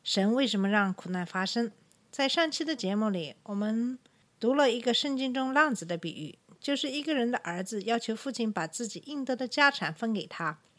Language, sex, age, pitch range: Chinese, female, 50-69, 185-255 Hz